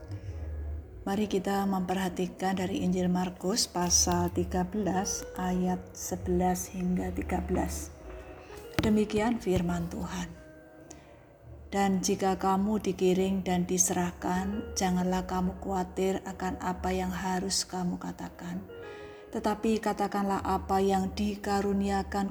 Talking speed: 95 wpm